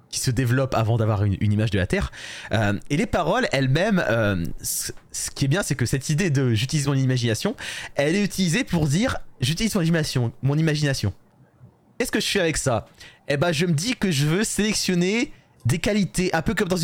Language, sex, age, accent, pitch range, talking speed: French, male, 20-39, French, 130-175 Hz, 215 wpm